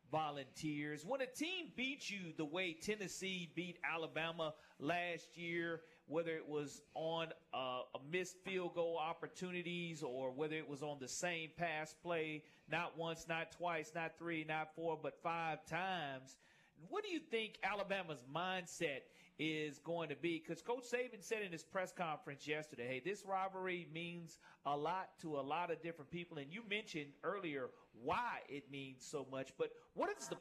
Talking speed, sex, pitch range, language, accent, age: 170 wpm, male, 155-195 Hz, English, American, 40-59